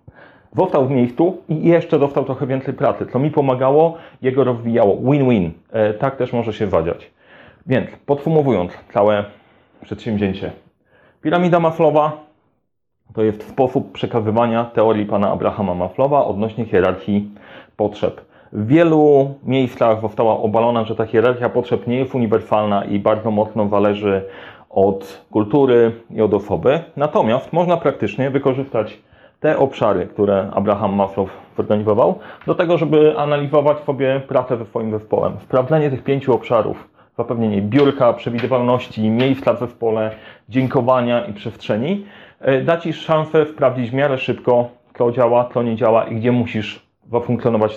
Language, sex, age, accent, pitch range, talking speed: Polish, male, 30-49, native, 110-140 Hz, 135 wpm